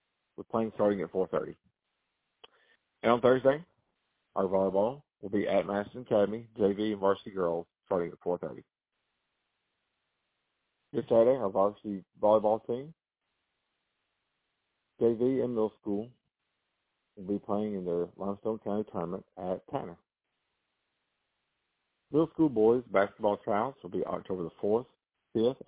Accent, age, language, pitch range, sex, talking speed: American, 50-69, English, 100-115 Hz, male, 125 wpm